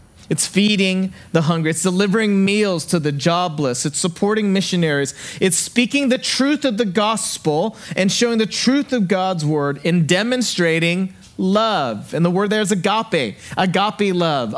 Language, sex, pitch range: English, male, 160-210 Hz